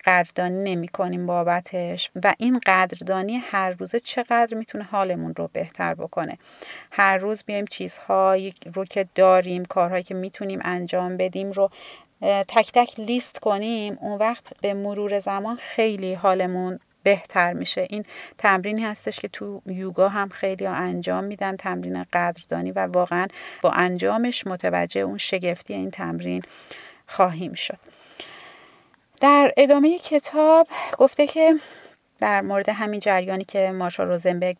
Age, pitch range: 30-49, 180-230 Hz